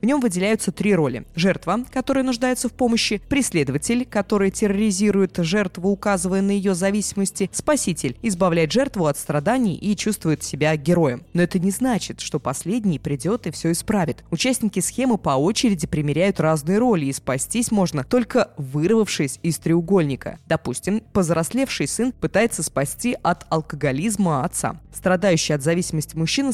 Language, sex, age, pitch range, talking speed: Russian, female, 20-39, 160-215 Hz, 140 wpm